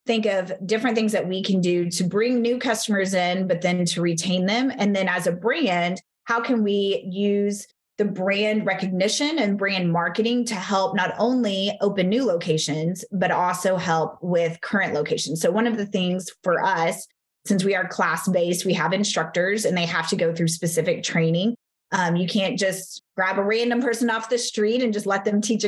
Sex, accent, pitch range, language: female, American, 180-220 Hz, English